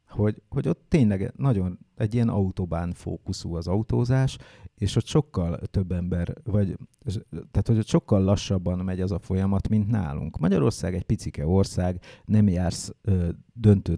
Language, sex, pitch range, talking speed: English, male, 90-110 Hz, 160 wpm